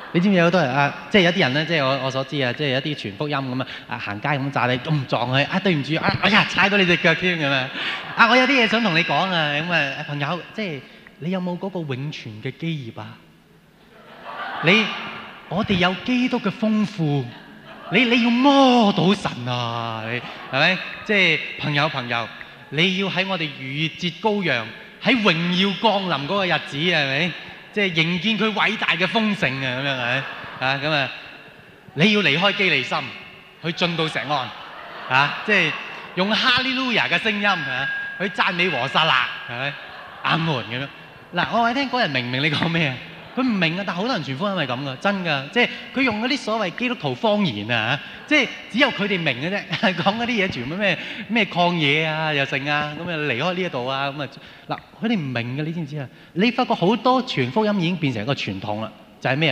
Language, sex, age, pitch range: Chinese, male, 20-39, 140-205 Hz